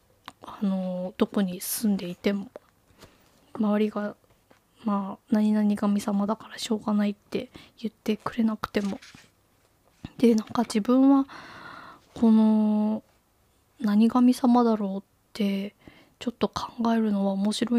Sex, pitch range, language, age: female, 200-230 Hz, Japanese, 20-39